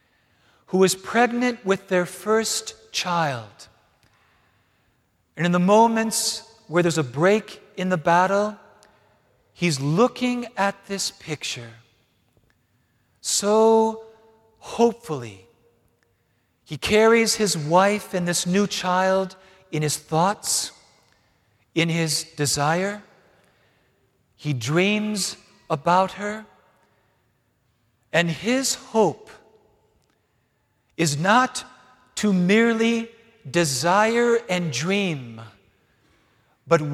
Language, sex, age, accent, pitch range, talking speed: English, male, 50-69, American, 150-220 Hz, 90 wpm